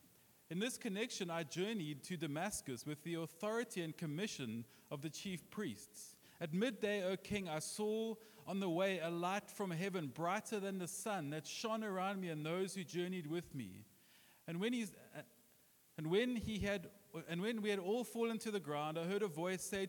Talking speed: 195 wpm